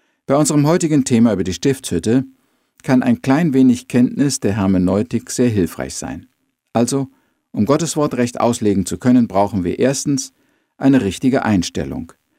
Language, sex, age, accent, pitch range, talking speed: German, male, 50-69, German, 95-130 Hz, 150 wpm